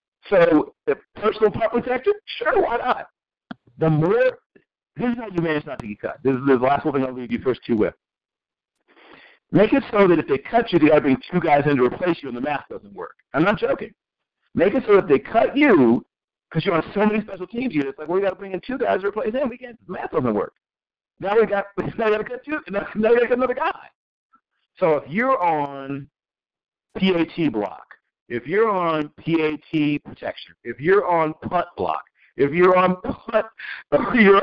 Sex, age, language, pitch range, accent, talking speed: male, 50-69, English, 155-245 Hz, American, 210 wpm